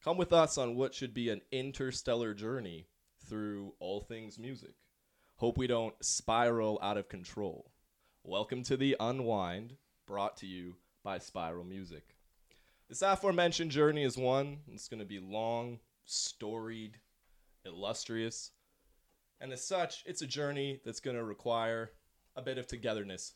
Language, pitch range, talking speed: English, 105-130 Hz, 145 wpm